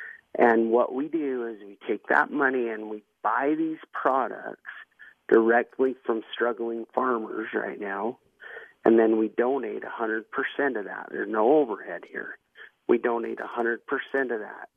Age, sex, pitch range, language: 40-59, male, 115-130 Hz, English